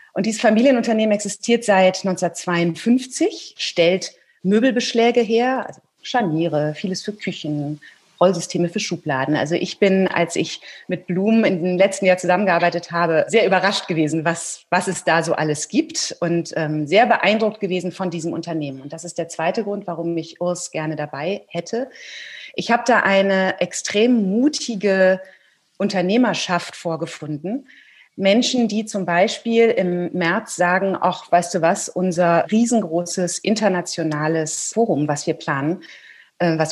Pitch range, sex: 170-210 Hz, female